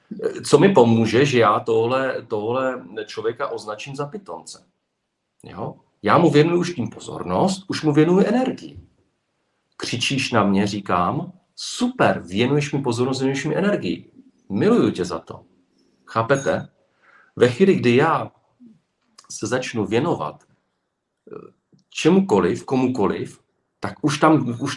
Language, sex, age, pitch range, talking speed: Czech, male, 50-69, 105-140 Hz, 125 wpm